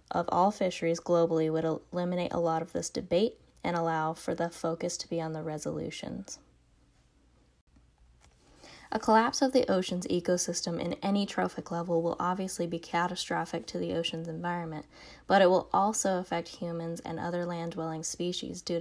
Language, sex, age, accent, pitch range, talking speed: English, female, 10-29, American, 165-195 Hz, 160 wpm